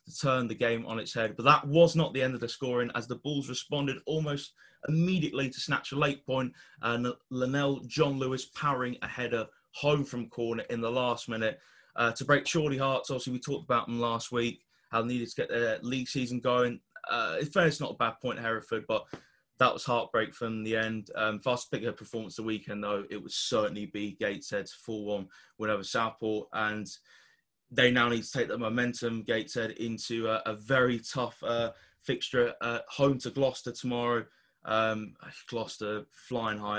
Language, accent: English, British